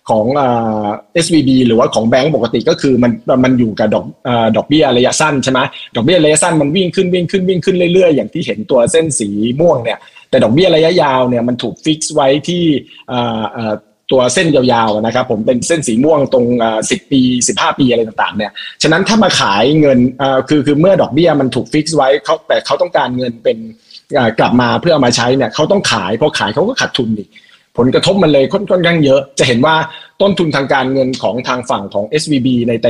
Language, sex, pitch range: Thai, male, 120-160 Hz